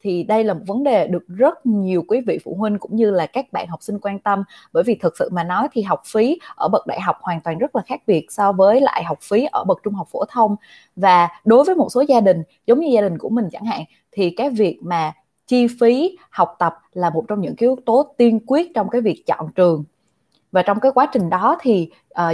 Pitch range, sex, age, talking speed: 180-245 Hz, female, 20-39, 260 wpm